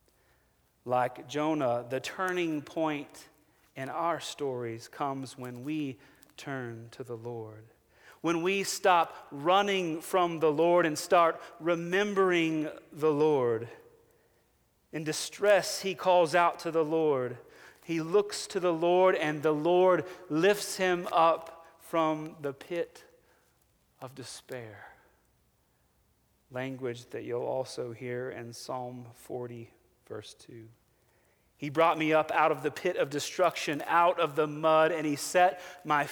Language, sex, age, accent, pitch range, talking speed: English, male, 40-59, American, 130-170 Hz, 130 wpm